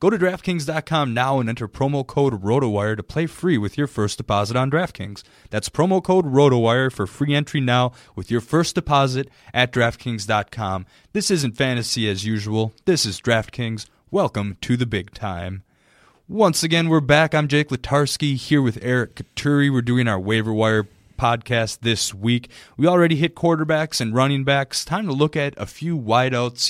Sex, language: male, English